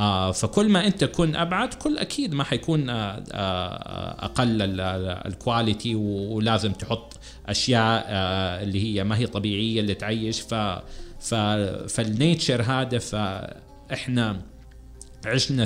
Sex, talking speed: male, 105 wpm